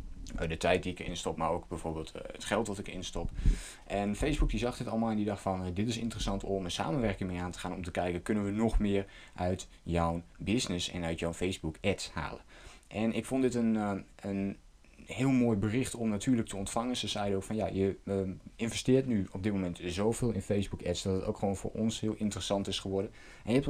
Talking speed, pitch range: 230 wpm, 90-110 Hz